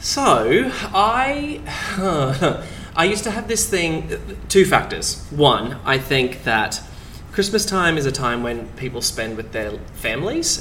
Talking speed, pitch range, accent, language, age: 140 wpm, 115-145 Hz, Australian, English, 20-39